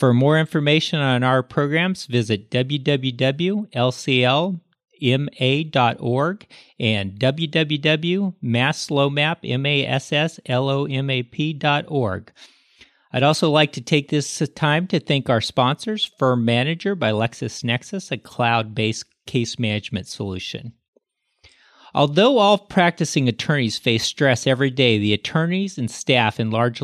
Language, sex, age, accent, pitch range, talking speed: English, male, 40-59, American, 115-145 Hz, 100 wpm